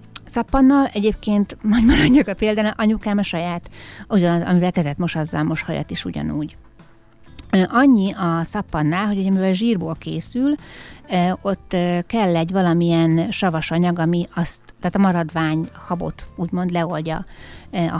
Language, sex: Hungarian, female